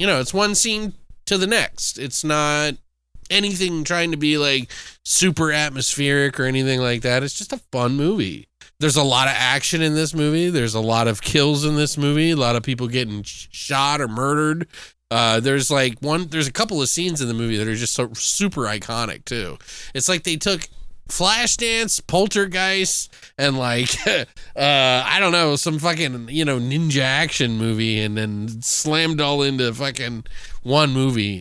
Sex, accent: male, American